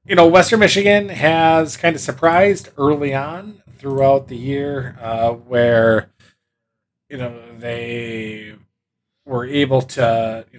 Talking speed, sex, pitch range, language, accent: 125 wpm, male, 110-140 Hz, English, American